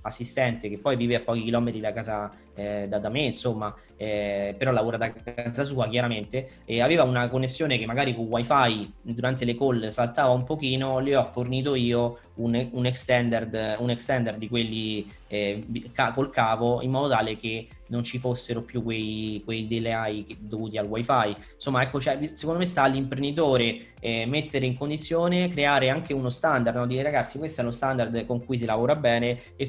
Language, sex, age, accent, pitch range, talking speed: Italian, male, 20-39, native, 110-130 Hz, 185 wpm